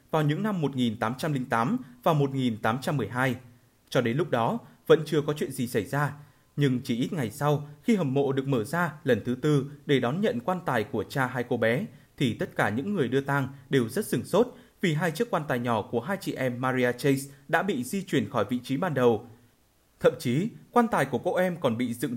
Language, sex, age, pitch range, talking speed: Vietnamese, male, 20-39, 120-160 Hz, 225 wpm